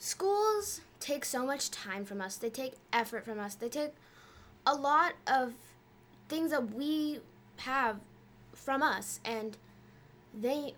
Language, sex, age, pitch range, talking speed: English, female, 10-29, 230-300 Hz, 140 wpm